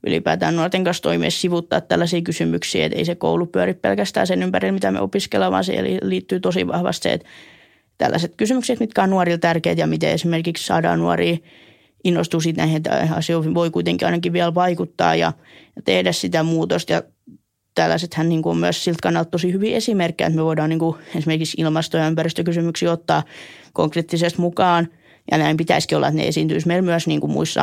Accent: native